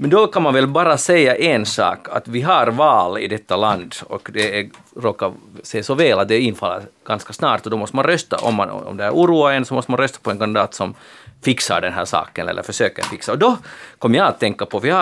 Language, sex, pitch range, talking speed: Swedish, male, 110-140 Hz, 255 wpm